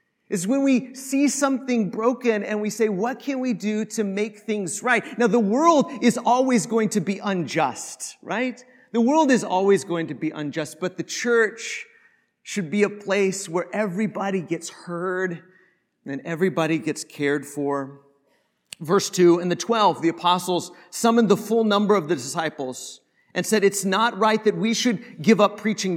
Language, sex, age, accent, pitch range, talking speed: English, male, 40-59, American, 185-230 Hz, 175 wpm